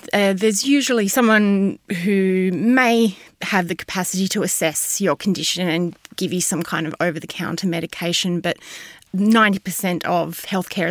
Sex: female